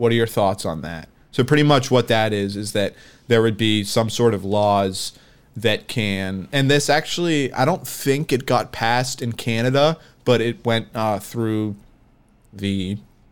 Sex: male